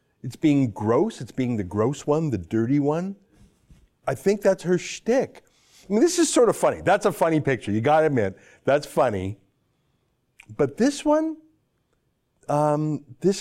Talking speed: 170 wpm